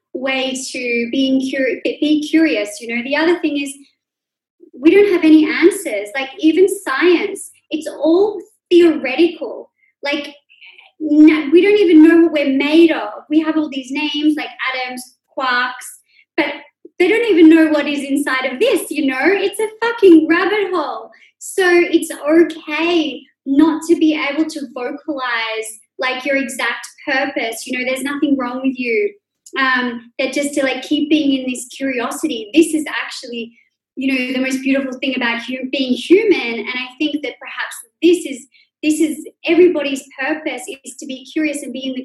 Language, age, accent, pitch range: English, 20-39, Australian, 265-325 Hz